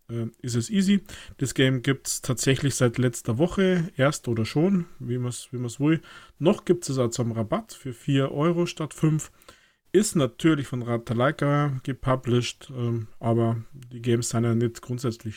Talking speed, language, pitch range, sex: 170 wpm, German, 120-150 Hz, male